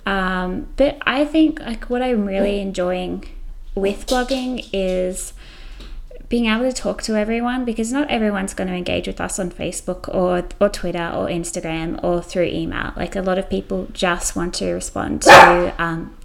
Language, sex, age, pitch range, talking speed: English, female, 20-39, 180-235 Hz, 175 wpm